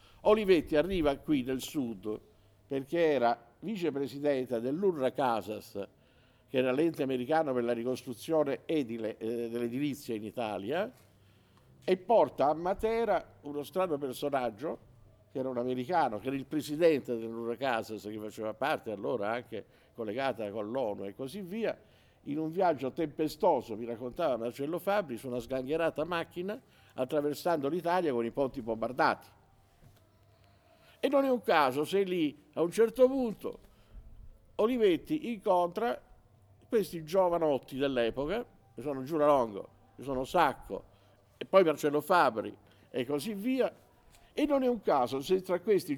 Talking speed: 135 wpm